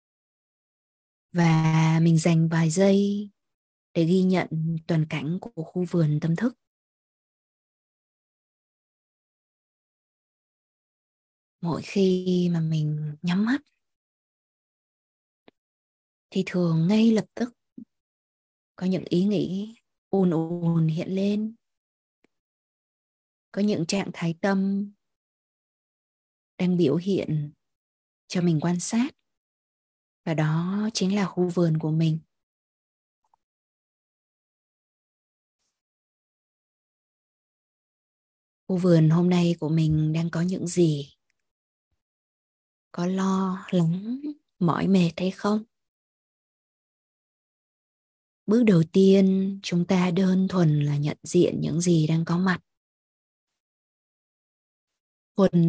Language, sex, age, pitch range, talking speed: Vietnamese, female, 20-39, 165-195 Hz, 95 wpm